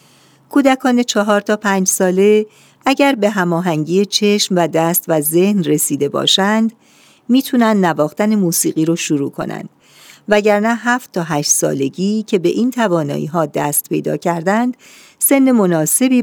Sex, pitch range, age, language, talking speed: female, 160-210 Hz, 50-69, Persian, 135 wpm